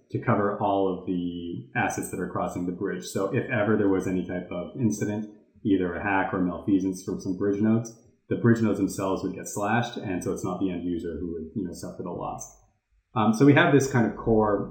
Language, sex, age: English, male, 30-49